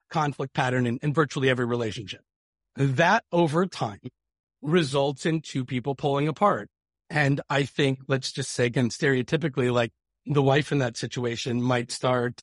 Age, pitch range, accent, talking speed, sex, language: 40-59, 130-165 Hz, American, 155 wpm, male, English